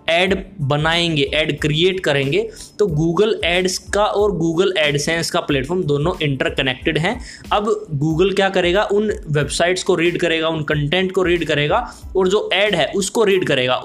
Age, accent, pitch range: 20-39, native, 150-185 Hz